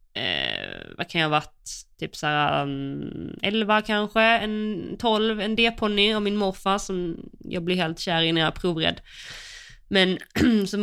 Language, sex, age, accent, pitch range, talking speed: Swedish, female, 20-39, native, 145-170 Hz, 165 wpm